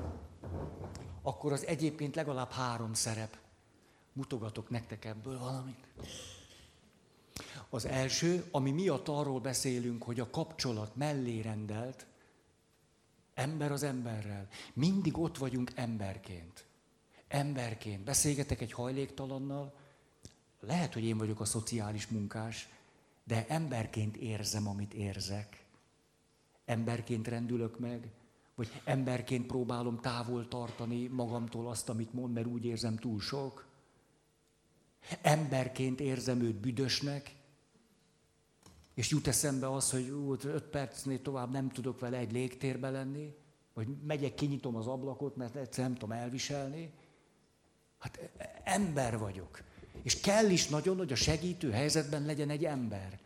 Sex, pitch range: male, 115-140 Hz